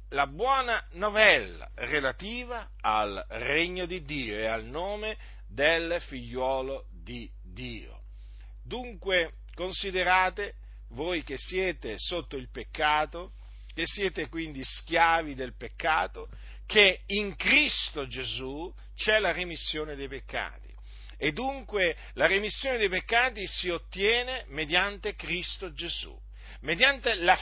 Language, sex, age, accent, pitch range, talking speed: Italian, male, 50-69, native, 155-235 Hz, 110 wpm